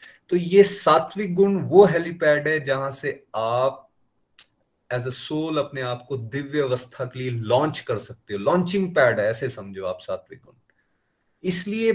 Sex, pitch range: male, 115-175 Hz